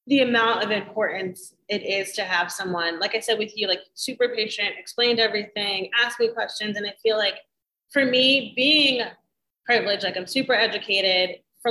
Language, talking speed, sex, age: English, 180 wpm, female, 20-39